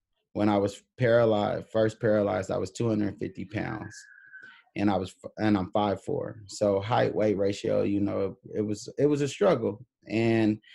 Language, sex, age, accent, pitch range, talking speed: English, male, 20-39, American, 95-115 Hz, 160 wpm